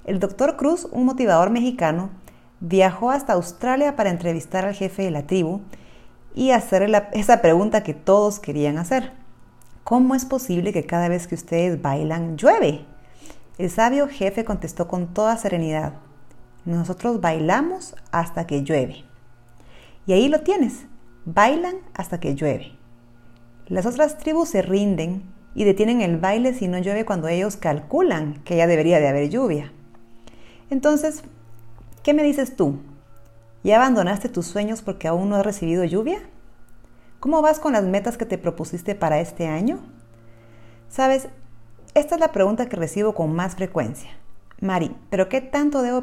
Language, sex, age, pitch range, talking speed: Spanish, female, 40-59, 155-240 Hz, 150 wpm